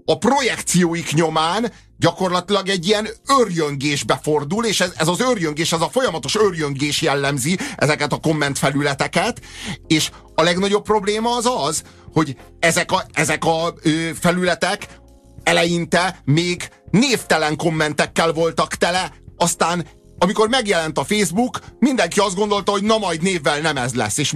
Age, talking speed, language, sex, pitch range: 30-49, 135 wpm, Hungarian, male, 140-195 Hz